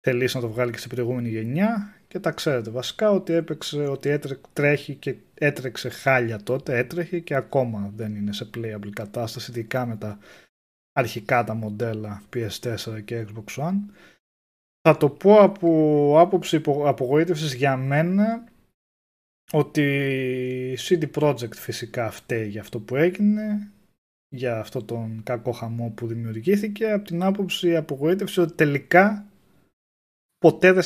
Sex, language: male, Greek